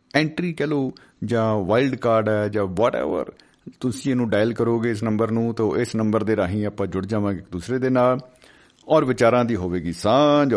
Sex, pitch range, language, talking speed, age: male, 100-130 Hz, Punjabi, 170 wpm, 50-69